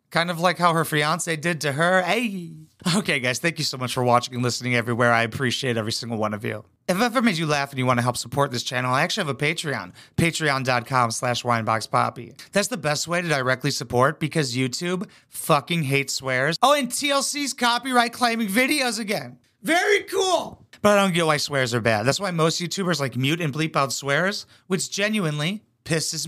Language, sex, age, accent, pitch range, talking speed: English, male, 30-49, American, 135-200 Hz, 210 wpm